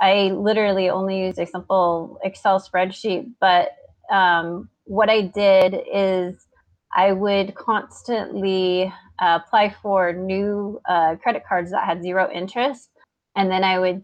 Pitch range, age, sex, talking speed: 180-200 Hz, 30-49, female, 135 wpm